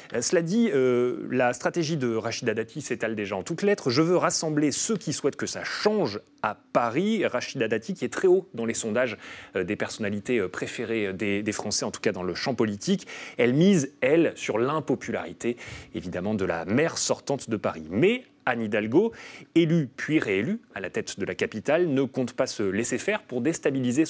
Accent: French